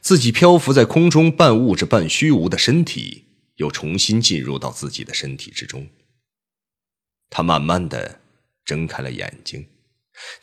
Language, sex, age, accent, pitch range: Chinese, male, 30-49, native, 80-130 Hz